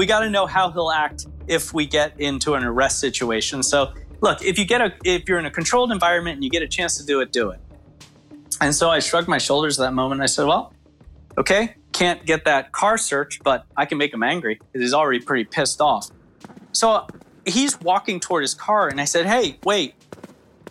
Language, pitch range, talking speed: English, 130-175 Hz, 230 wpm